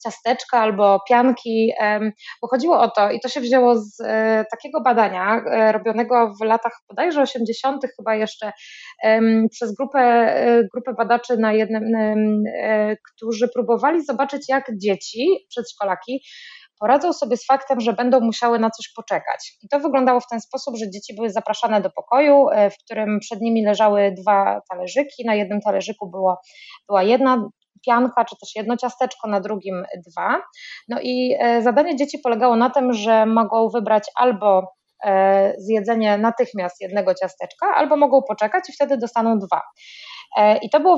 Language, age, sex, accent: Polish, 20-39, female, native